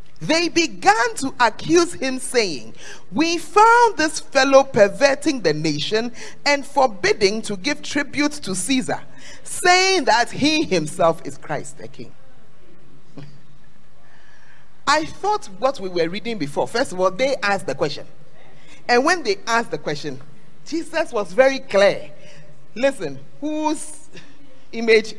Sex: male